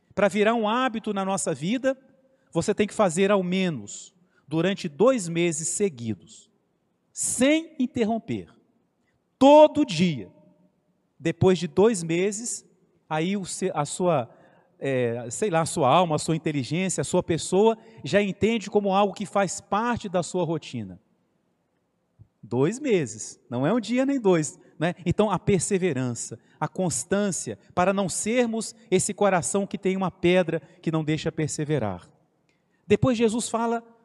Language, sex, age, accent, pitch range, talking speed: Portuguese, male, 40-59, Brazilian, 165-230 Hz, 135 wpm